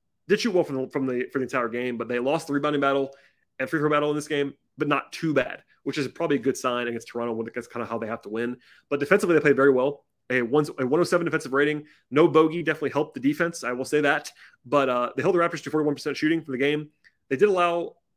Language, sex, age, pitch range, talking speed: English, male, 30-49, 130-160 Hz, 270 wpm